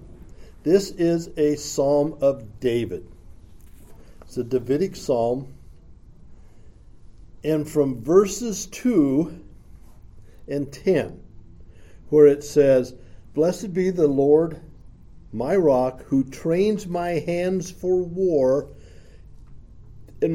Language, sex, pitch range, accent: English, male, 120-170 Hz, American